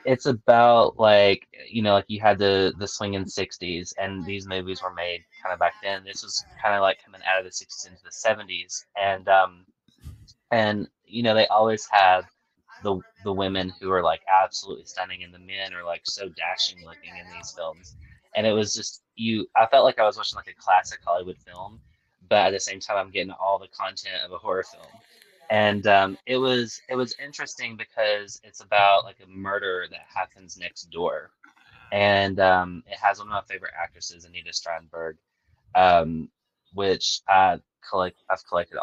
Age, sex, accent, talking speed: 20-39, male, American, 195 wpm